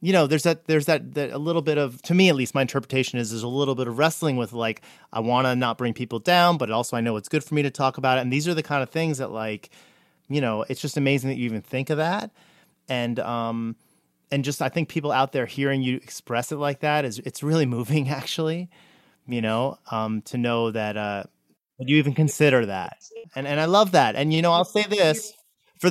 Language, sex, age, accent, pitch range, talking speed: English, male, 30-49, American, 120-150 Hz, 250 wpm